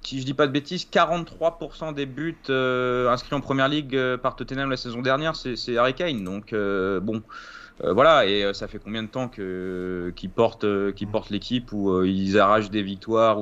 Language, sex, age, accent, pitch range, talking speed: French, male, 30-49, French, 105-140 Hz, 225 wpm